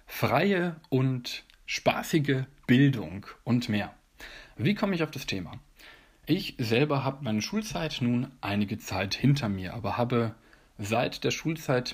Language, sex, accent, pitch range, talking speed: German, male, German, 115-140 Hz, 135 wpm